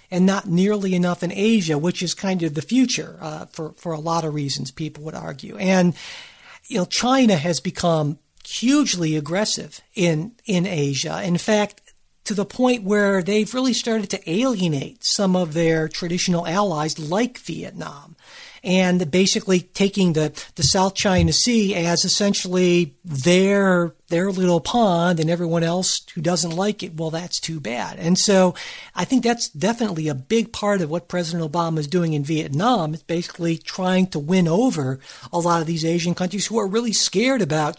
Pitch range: 165-200 Hz